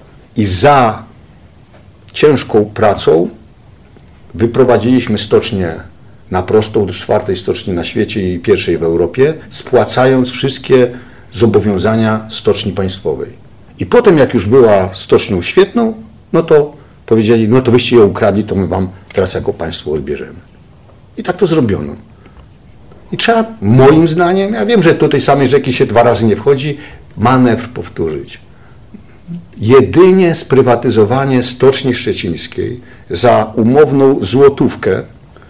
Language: Polish